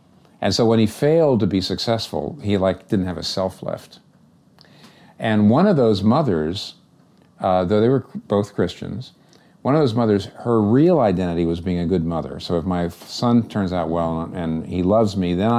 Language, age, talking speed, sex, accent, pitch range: English, 50-69, 195 wpm, male, American, 85-115 Hz